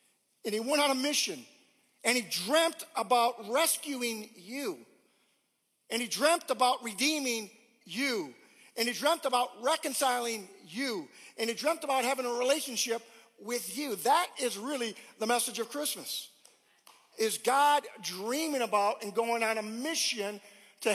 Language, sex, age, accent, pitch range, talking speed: English, male, 50-69, American, 225-285 Hz, 145 wpm